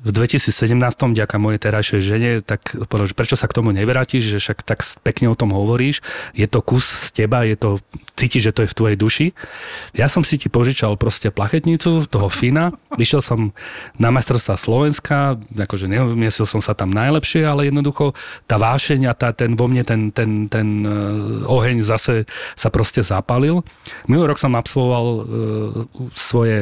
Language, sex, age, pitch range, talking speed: Slovak, male, 30-49, 105-125 Hz, 170 wpm